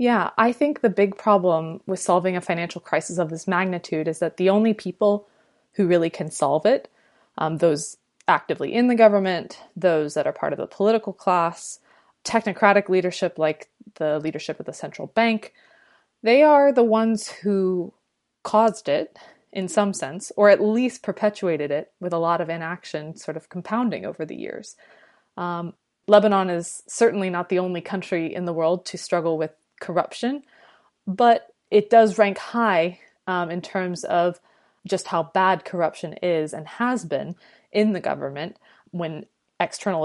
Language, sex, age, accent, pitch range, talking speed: English, female, 20-39, American, 170-210 Hz, 165 wpm